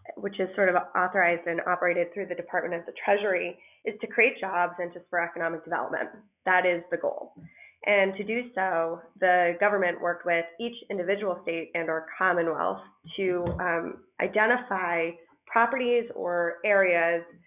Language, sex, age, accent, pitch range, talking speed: English, female, 20-39, American, 170-195 Hz, 160 wpm